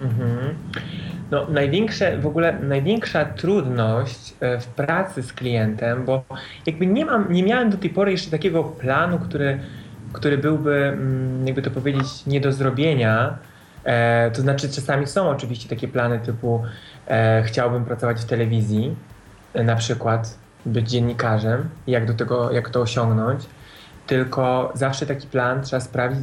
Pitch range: 115-135 Hz